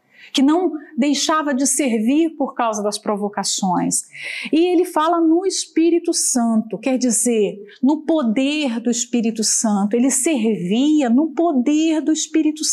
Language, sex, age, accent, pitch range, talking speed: Portuguese, female, 40-59, Brazilian, 225-330 Hz, 130 wpm